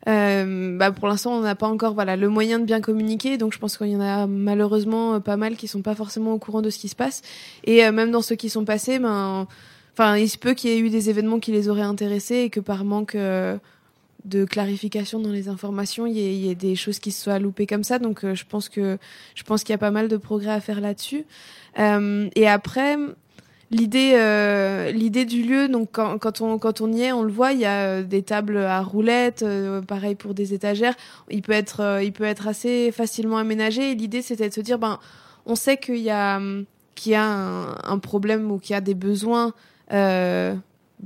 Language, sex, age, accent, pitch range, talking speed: French, female, 20-39, French, 200-230 Hz, 235 wpm